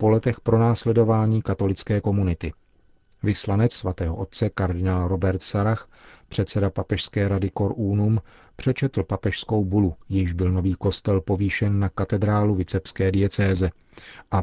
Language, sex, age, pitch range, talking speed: Czech, male, 40-59, 95-110 Hz, 120 wpm